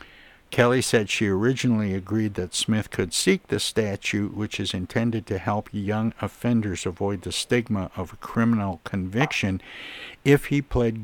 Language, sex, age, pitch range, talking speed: English, male, 60-79, 95-110 Hz, 150 wpm